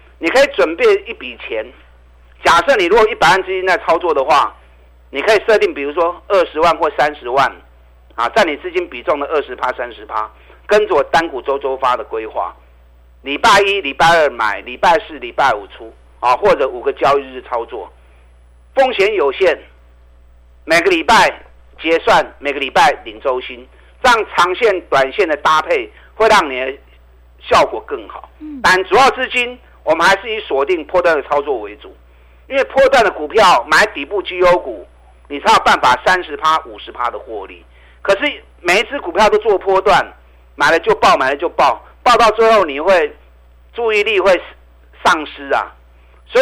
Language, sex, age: Chinese, male, 50-69